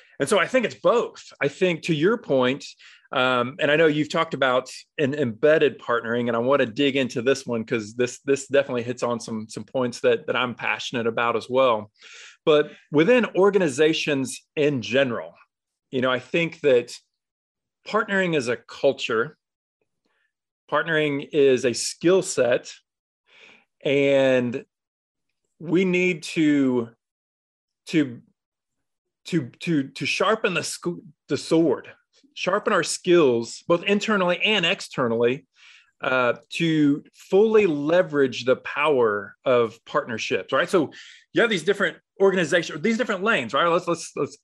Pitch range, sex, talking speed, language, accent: 125-180 Hz, male, 145 wpm, English, American